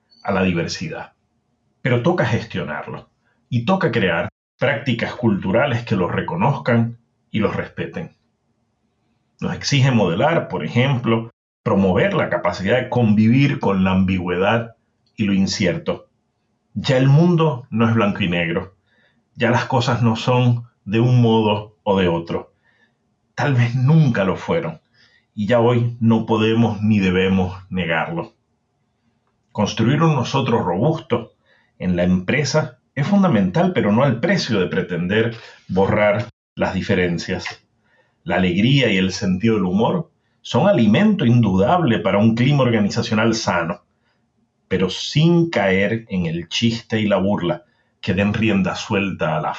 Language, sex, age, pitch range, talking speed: English, male, 40-59, 100-125 Hz, 135 wpm